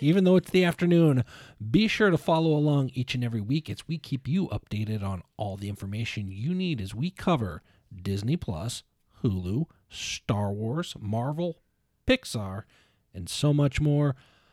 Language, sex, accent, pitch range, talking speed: English, male, American, 110-140 Hz, 160 wpm